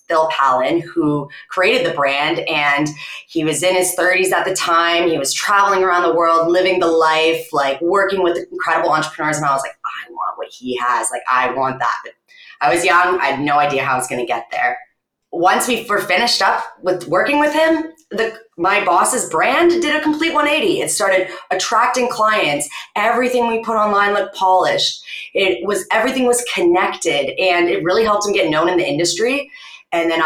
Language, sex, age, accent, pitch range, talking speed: English, female, 20-39, American, 160-240 Hz, 195 wpm